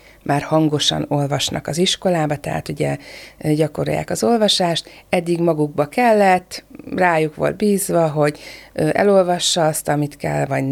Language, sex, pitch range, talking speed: Hungarian, female, 155-200 Hz, 125 wpm